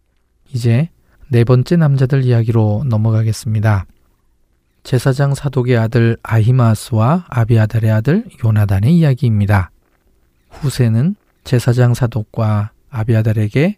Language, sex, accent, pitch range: Korean, male, native, 110-135 Hz